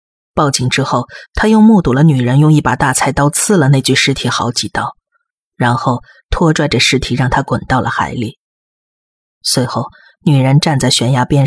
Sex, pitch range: female, 130-160 Hz